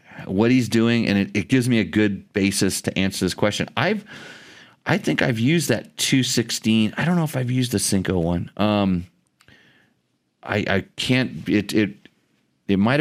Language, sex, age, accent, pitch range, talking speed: English, male, 40-59, American, 85-105 Hz, 180 wpm